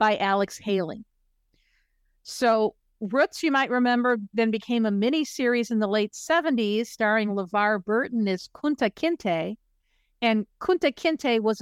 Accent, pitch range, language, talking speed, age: American, 200-255 Hz, English, 135 wpm, 50-69